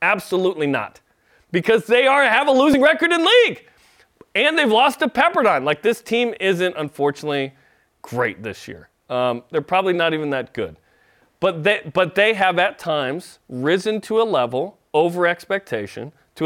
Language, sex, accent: English, male, American